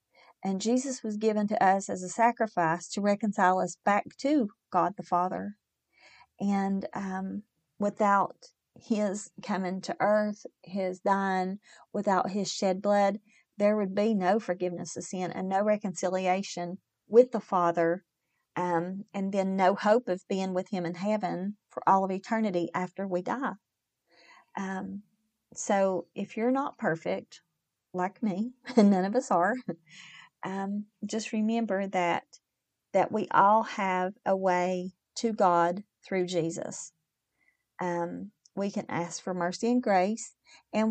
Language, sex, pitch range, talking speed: English, female, 180-220 Hz, 140 wpm